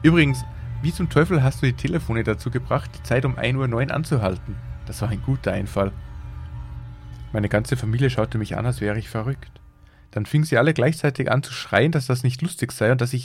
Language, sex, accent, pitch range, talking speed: German, male, German, 105-145 Hz, 215 wpm